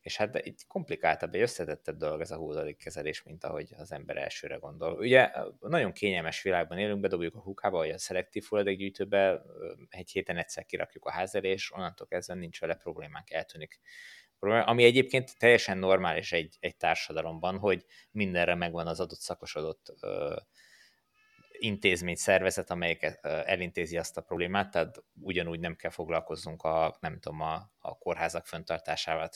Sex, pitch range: male, 90-115 Hz